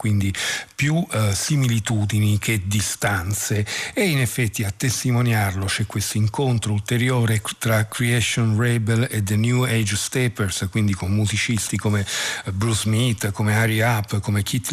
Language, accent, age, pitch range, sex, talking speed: Italian, native, 50-69, 105-125 Hz, male, 140 wpm